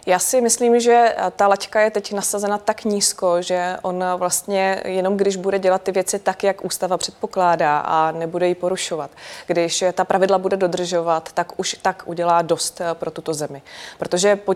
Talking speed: 175 wpm